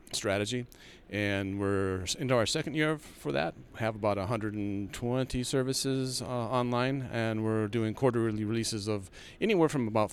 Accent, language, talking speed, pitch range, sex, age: American, English, 150 wpm, 100-120 Hz, male, 40-59